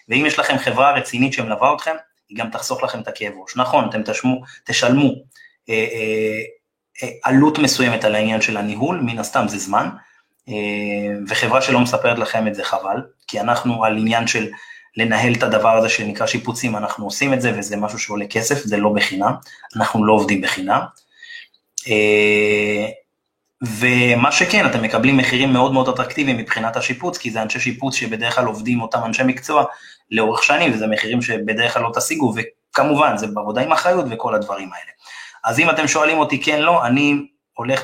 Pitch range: 110-130 Hz